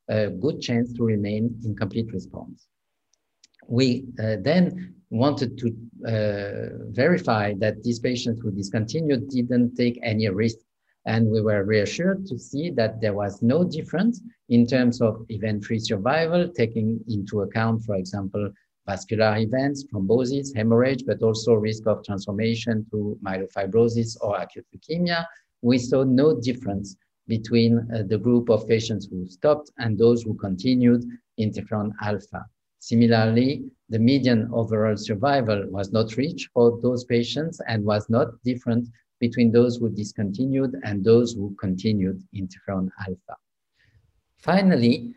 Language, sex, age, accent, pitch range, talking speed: English, male, 50-69, French, 110-125 Hz, 135 wpm